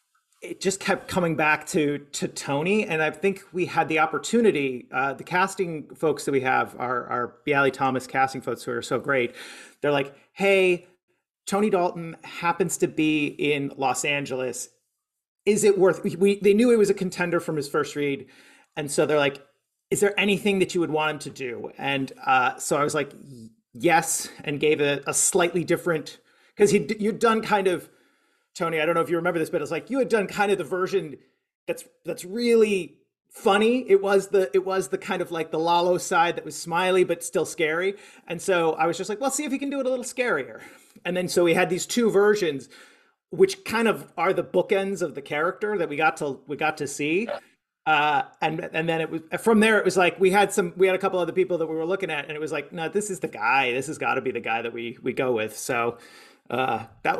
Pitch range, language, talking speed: 155-200 Hz, English, 235 wpm